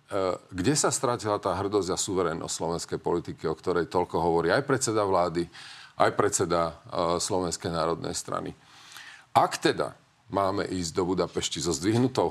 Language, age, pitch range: Slovak, 40-59, 85-115 Hz